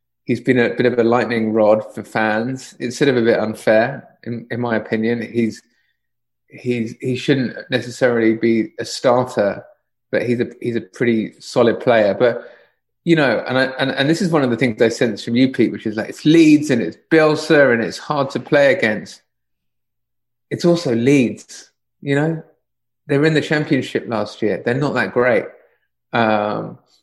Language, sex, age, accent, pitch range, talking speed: English, male, 30-49, British, 110-135 Hz, 190 wpm